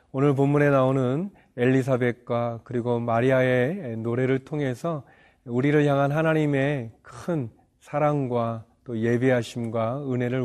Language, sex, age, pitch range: Korean, male, 40-59, 120-140 Hz